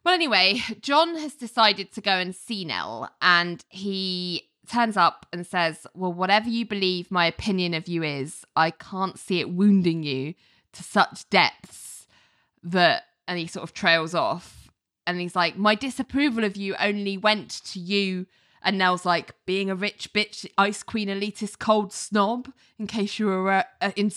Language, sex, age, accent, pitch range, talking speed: English, female, 20-39, British, 185-240 Hz, 170 wpm